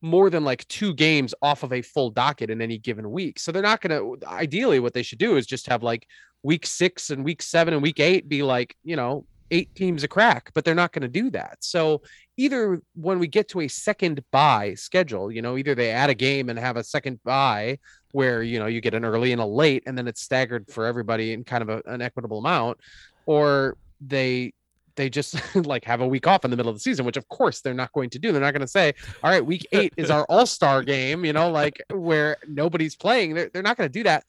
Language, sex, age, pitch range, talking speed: English, male, 20-39, 125-170 Hz, 250 wpm